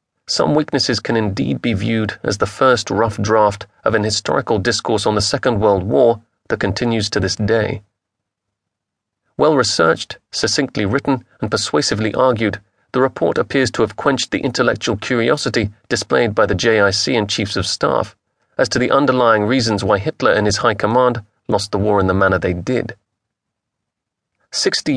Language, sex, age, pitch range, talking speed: English, male, 30-49, 105-125 Hz, 165 wpm